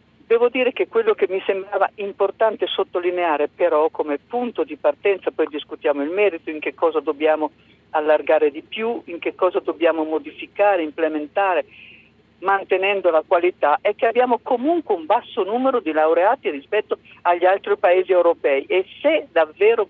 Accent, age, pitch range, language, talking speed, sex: native, 50-69, 165-235 Hz, Italian, 155 wpm, female